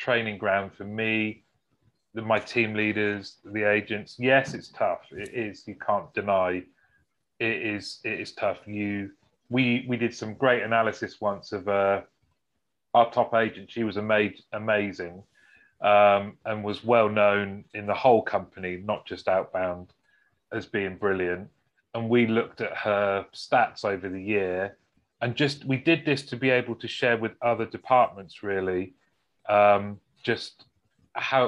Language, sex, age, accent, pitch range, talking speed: English, male, 30-49, British, 100-125 Hz, 155 wpm